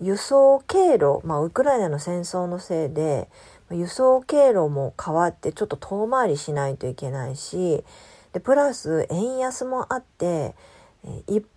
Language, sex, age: Japanese, female, 40-59